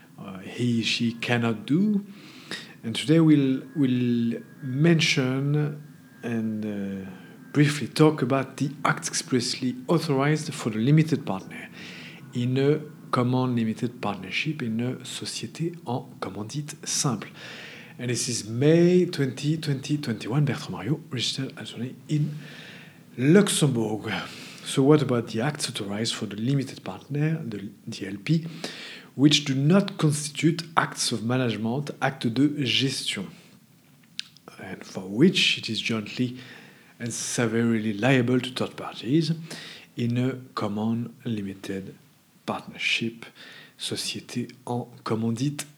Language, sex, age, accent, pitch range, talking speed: English, male, 50-69, French, 115-150 Hz, 120 wpm